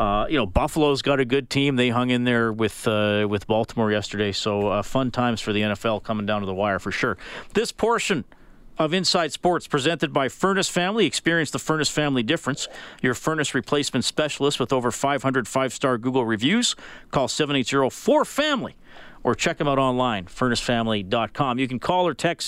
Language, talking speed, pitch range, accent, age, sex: English, 185 wpm, 115-155 Hz, American, 40-59, male